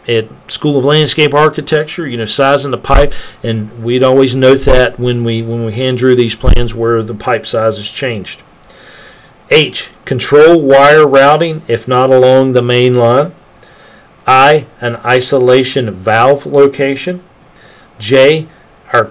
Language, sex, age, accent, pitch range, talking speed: English, male, 40-59, American, 120-150 Hz, 145 wpm